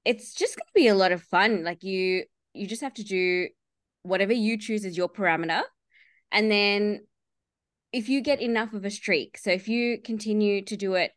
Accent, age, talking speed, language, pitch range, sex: Australian, 20-39, 205 wpm, English, 175-220 Hz, female